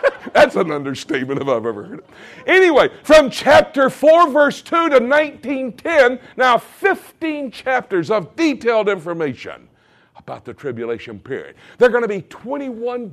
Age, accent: 60-79, American